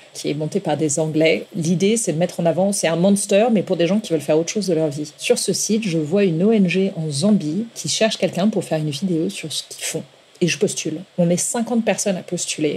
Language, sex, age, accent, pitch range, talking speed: French, female, 40-59, French, 160-195 Hz, 265 wpm